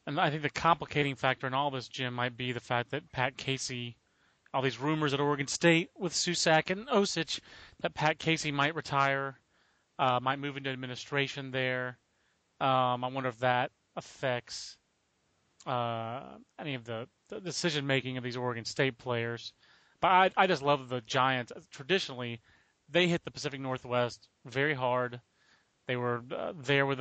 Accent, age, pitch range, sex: American, 30-49, 120-150 Hz, male